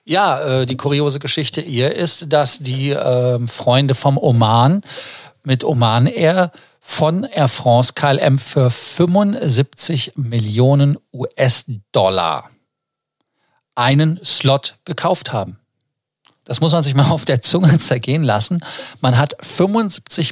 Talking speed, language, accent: 120 wpm, German, German